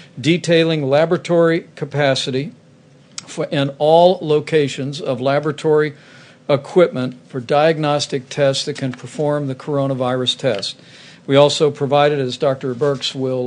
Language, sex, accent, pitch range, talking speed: English, male, American, 135-155 Hz, 110 wpm